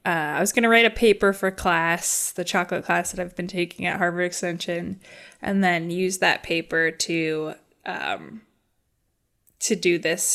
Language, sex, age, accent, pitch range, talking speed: English, female, 10-29, American, 175-215 Hz, 175 wpm